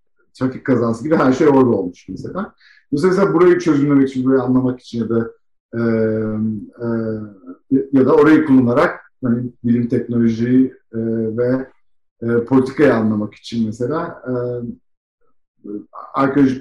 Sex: male